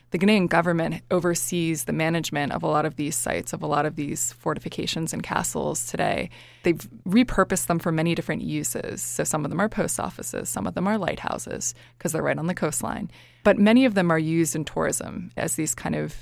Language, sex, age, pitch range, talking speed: English, female, 20-39, 155-185 Hz, 215 wpm